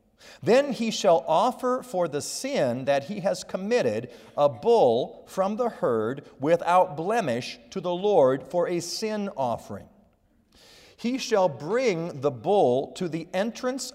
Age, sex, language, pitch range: 40-59, male, English, 165-230 Hz